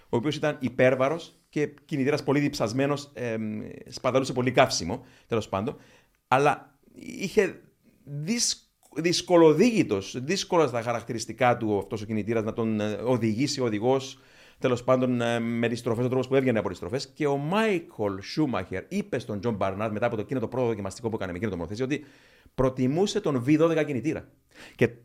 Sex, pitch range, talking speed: male, 115-170 Hz, 160 wpm